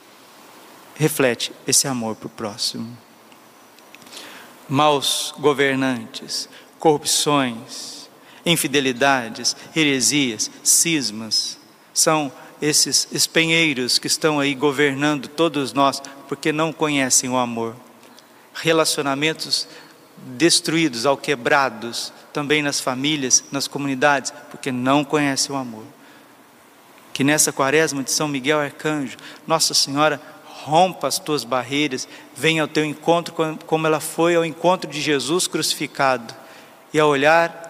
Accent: Brazilian